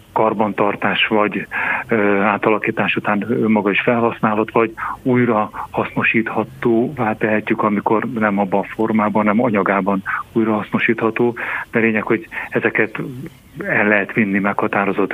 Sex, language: male, Hungarian